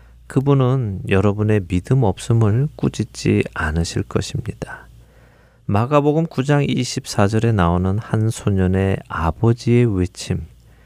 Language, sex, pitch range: Korean, male, 85-120 Hz